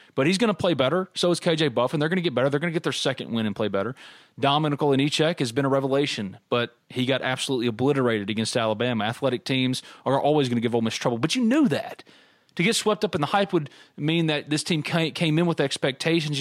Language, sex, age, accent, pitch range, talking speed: English, male, 30-49, American, 125-175 Hz, 250 wpm